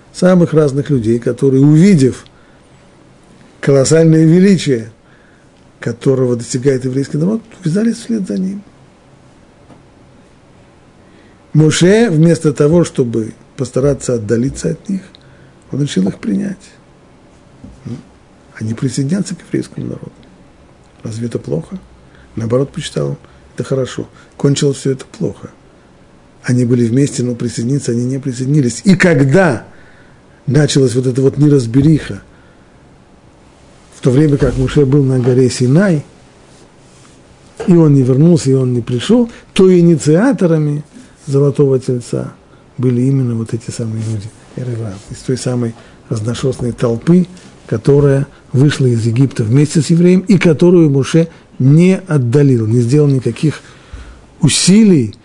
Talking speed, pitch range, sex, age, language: 115 wpm, 125-155 Hz, male, 50-69, Russian